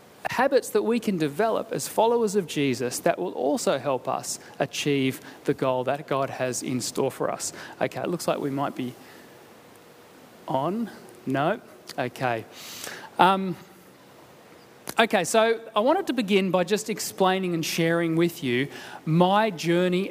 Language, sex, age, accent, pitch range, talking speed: English, male, 30-49, Australian, 150-210 Hz, 150 wpm